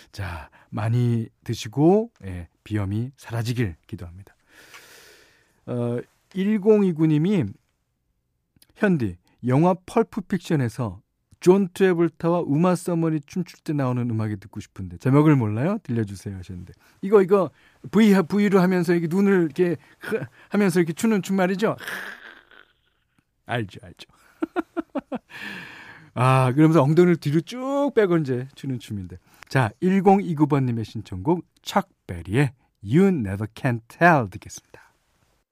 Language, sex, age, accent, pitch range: Korean, male, 40-59, native, 115-180 Hz